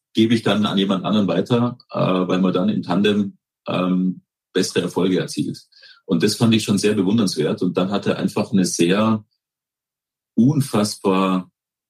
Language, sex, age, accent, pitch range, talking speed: German, male, 40-59, German, 90-110 Hz, 150 wpm